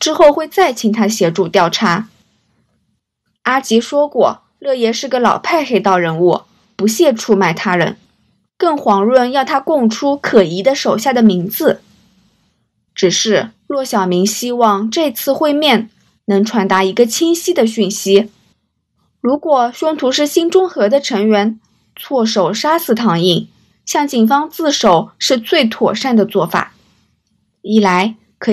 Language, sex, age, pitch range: Chinese, female, 20-39, 205-280 Hz